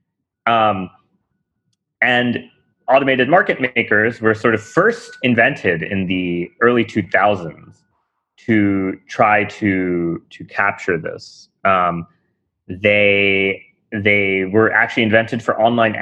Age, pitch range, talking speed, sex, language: 30-49, 95-120 Hz, 105 wpm, male, English